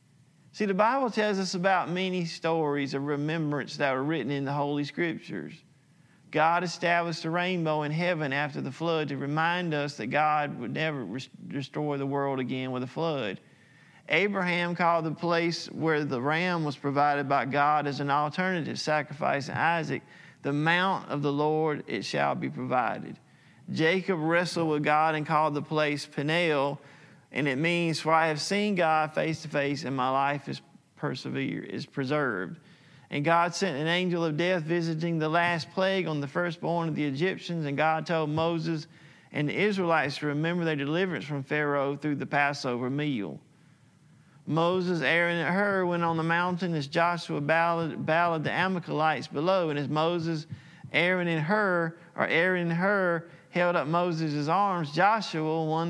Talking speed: 170 wpm